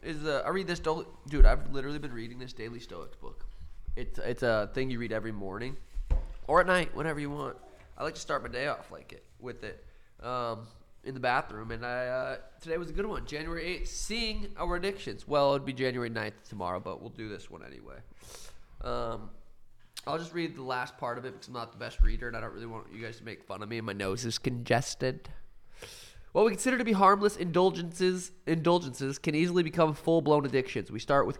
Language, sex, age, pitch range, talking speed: English, male, 20-39, 120-155 Hz, 225 wpm